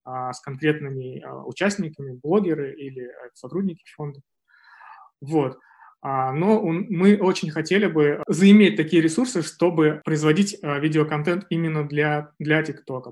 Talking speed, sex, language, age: 105 wpm, male, Russian, 20-39